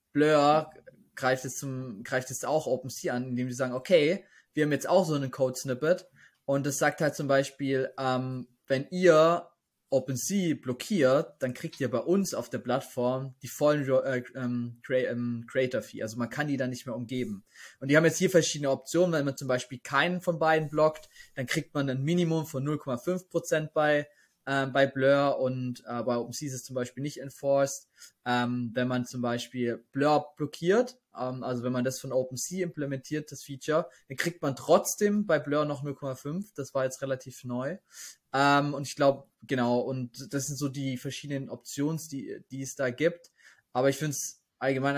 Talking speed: 185 wpm